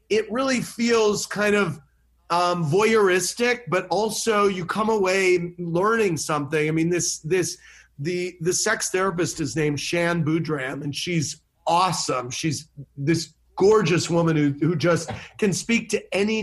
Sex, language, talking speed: male, English, 145 wpm